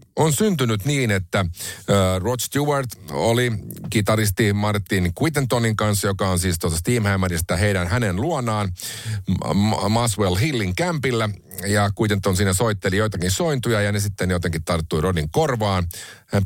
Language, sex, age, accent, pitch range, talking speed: Finnish, male, 50-69, native, 90-125 Hz, 140 wpm